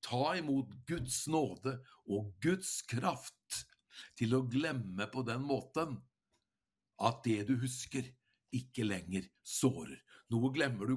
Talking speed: 125 wpm